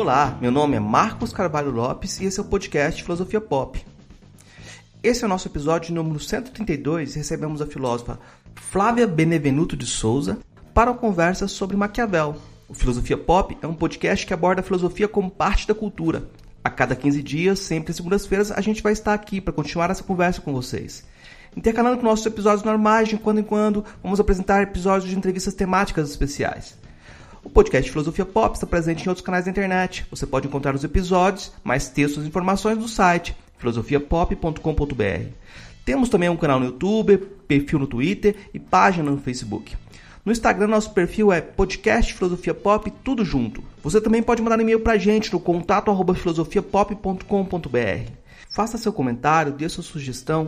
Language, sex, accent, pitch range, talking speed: Portuguese, male, Brazilian, 140-200 Hz, 175 wpm